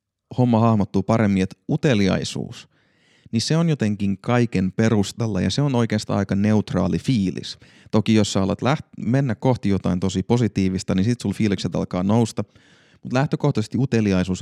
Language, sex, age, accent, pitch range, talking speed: Finnish, male, 30-49, native, 95-120 Hz, 150 wpm